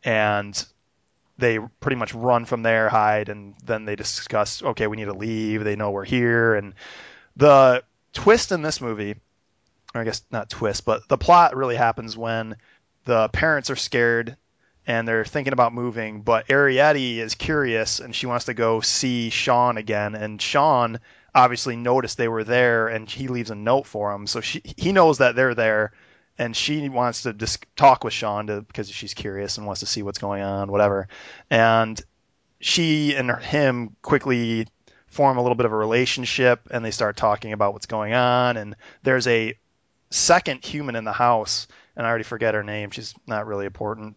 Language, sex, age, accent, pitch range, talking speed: English, male, 20-39, American, 105-125 Hz, 185 wpm